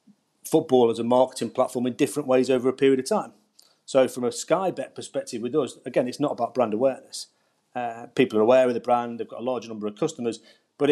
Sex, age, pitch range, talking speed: male, 40-59, 110-135 Hz, 225 wpm